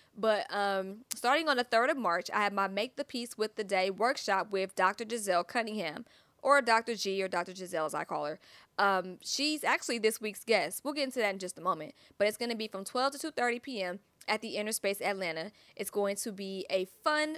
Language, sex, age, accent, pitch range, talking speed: English, female, 20-39, American, 190-225 Hz, 230 wpm